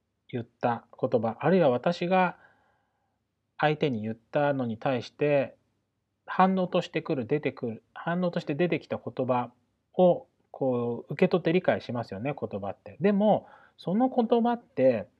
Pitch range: 115-180 Hz